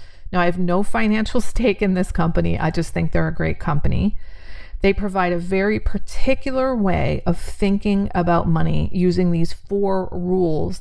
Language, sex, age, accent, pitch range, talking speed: English, female, 40-59, American, 170-200 Hz, 165 wpm